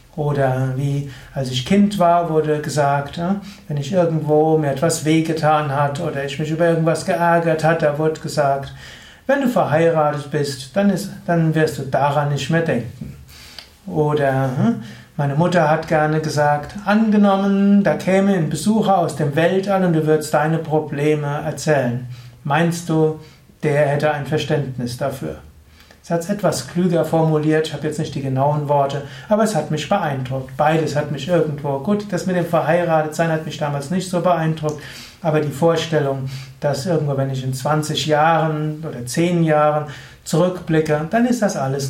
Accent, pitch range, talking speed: German, 140-165 Hz, 165 wpm